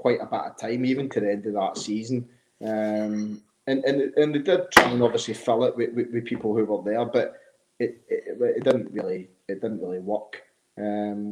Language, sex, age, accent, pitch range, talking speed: English, male, 30-49, British, 115-140 Hz, 215 wpm